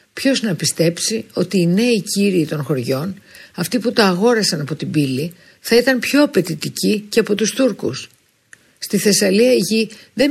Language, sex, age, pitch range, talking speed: Greek, female, 50-69, 150-195 Hz, 170 wpm